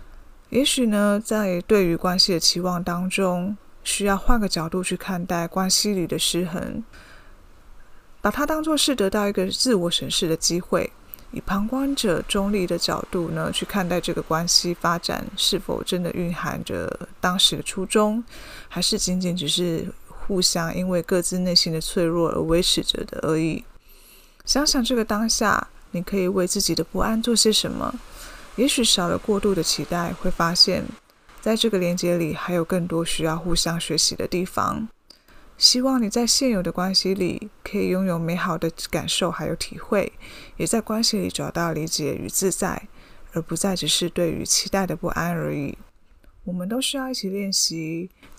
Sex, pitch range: female, 170-205 Hz